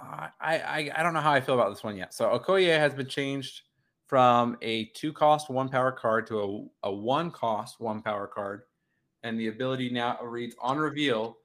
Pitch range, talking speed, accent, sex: 110-140 Hz, 190 wpm, American, male